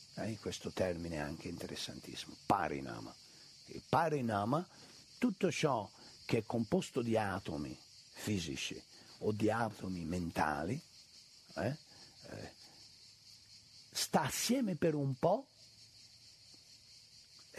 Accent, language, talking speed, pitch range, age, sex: native, Italian, 95 wpm, 105-165 Hz, 60-79, male